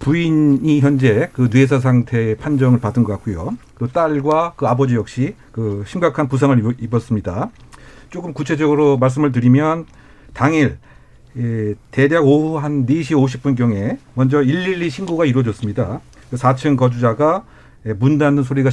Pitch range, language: 125-160 Hz, Korean